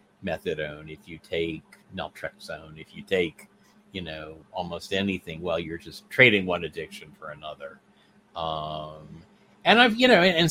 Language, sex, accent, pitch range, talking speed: English, male, American, 90-120 Hz, 150 wpm